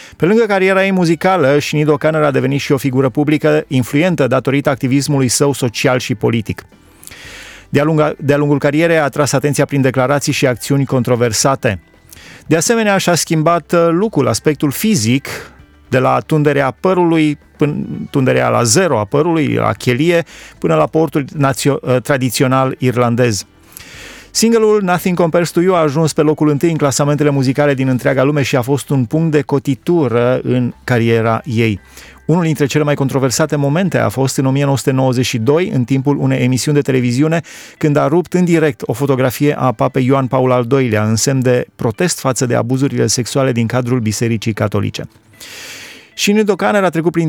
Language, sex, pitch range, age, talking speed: Romanian, male, 125-150 Hz, 30-49, 160 wpm